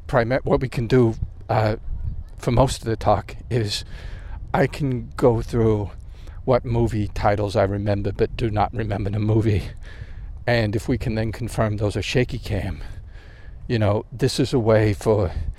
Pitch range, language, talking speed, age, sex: 90-115 Hz, English, 170 wpm, 50-69, male